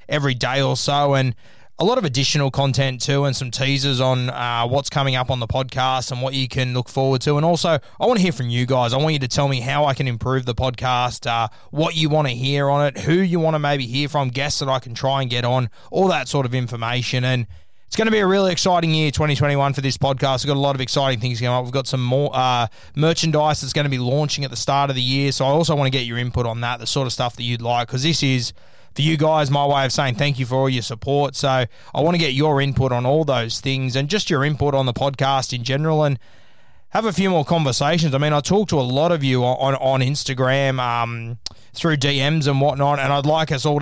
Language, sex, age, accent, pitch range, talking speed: English, male, 20-39, Australian, 125-145 Hz, 275 wpm